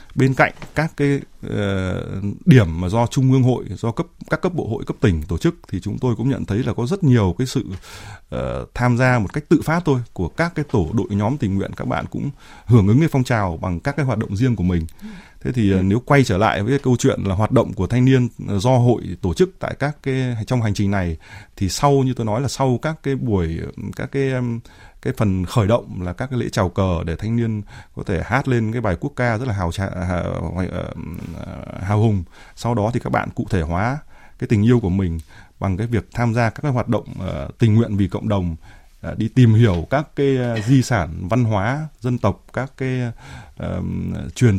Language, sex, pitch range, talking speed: Vietnamese, male, 95-130 Hz, 240 wpm